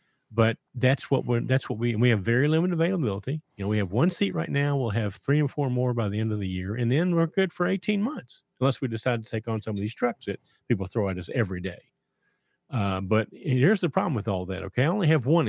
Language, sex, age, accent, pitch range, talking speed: English, male, 50-69, American, 105-140 Hz, 270 wpm